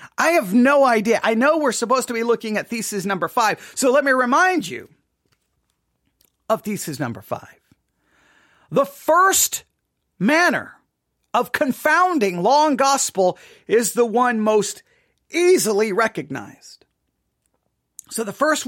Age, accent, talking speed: 40-59, American, 130 wpm